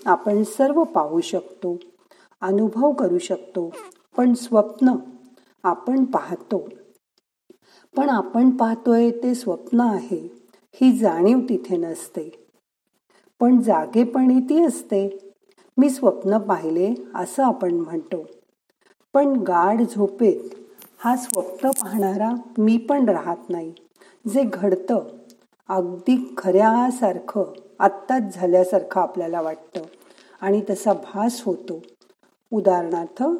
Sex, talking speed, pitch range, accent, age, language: female, 100 wpm, 185-255 Hz, native, 50-69, Marathi